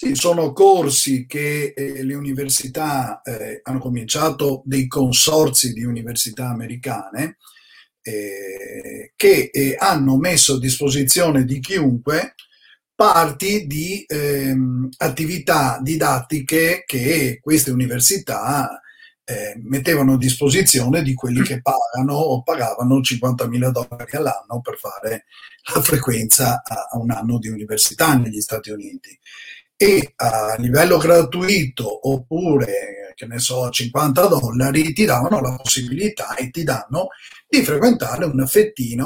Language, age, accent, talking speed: Italian, 50-69, native, 110 wpm